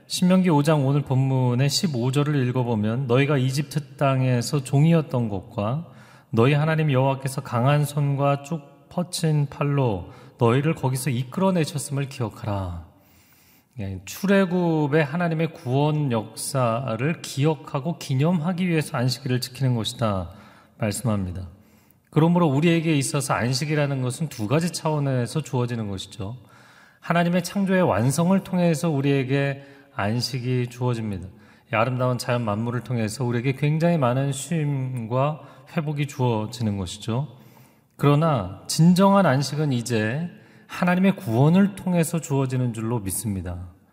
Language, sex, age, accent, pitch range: Korean, male, 30-49, native, 120-155 Hz